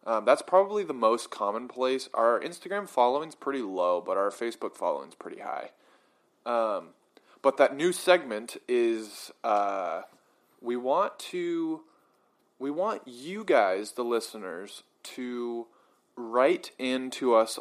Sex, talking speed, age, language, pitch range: male, 130 wpm, 20-39, English, 110-135 Hz